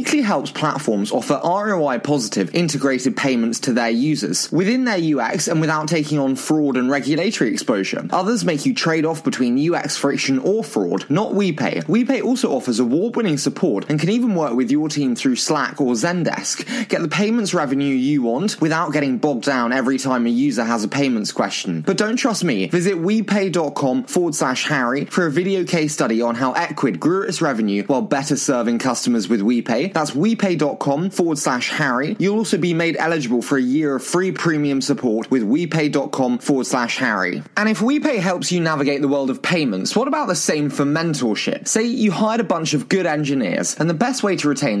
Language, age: English, 20-39